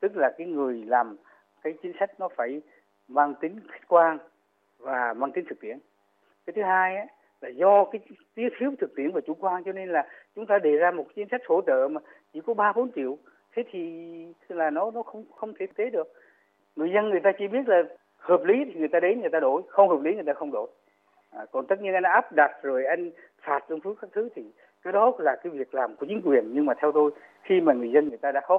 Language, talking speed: Vietnamese, 250 wpm